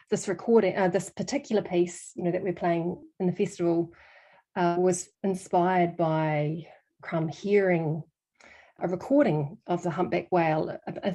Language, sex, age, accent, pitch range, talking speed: English, female, 30-49, Australian, 175-205 Hz, 150 wpm